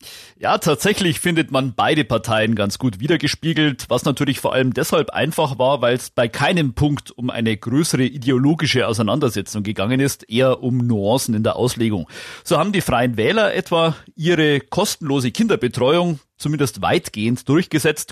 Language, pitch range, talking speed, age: German, 115-155 Hz, 150 wpm, 40-59